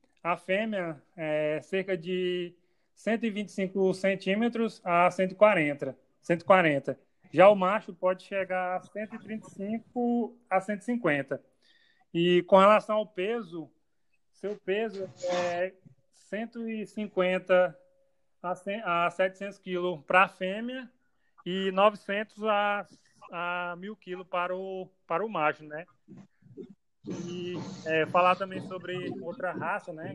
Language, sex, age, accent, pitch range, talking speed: Portuguese, male, 20-39, Brazilian, 170-205 Hz, 105 wpm